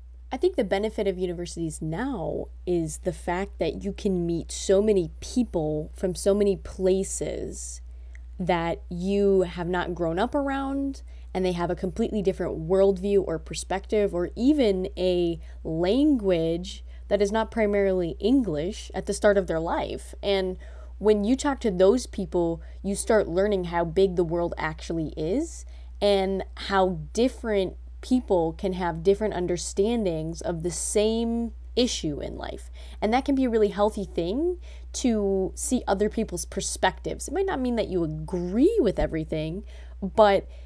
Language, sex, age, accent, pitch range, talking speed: English, female, 20-39, American, 170-210 Hz, 155 wpm